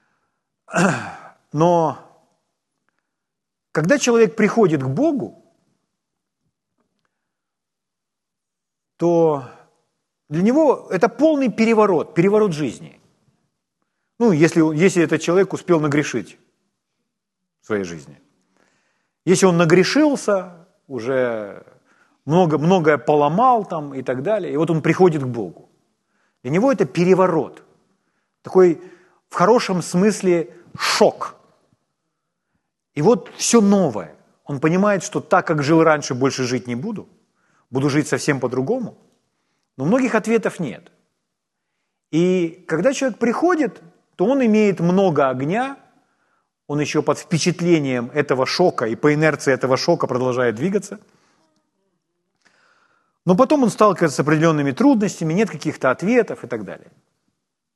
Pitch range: 150-215 Hz